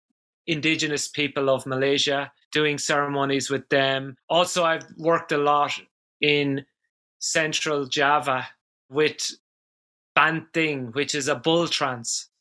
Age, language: 30-49, English